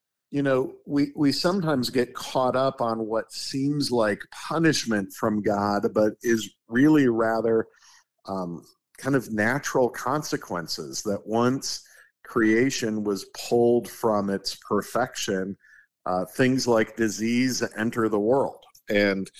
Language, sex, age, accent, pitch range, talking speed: English, male, 50-69, American, 100-130 Hz, 125 wpm